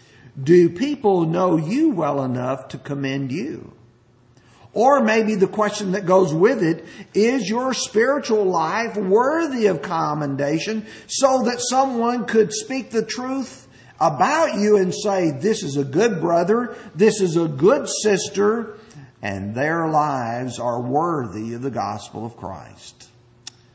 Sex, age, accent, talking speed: male, 50-69, American, 140 wpm